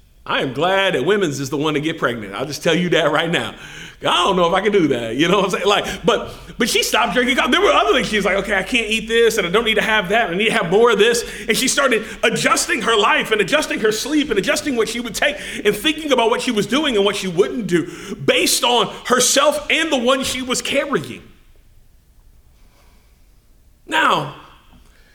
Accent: American